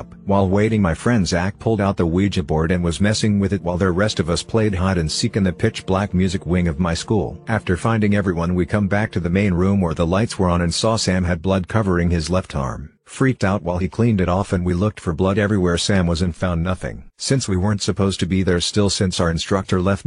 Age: 50-69